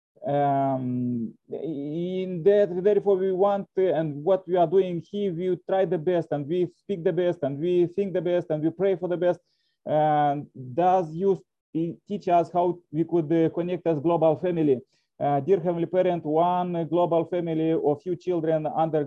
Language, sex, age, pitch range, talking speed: English, male, 30-49, 160-180 Hz, 175 wpm